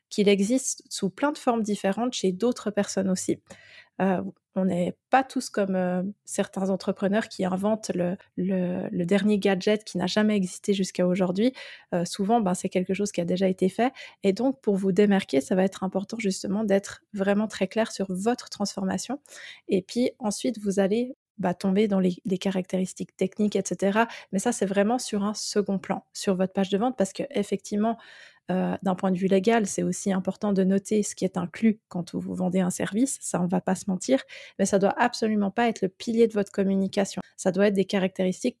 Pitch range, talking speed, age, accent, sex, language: 190-220 Hz, 205 wpm, 20-39, French, female, French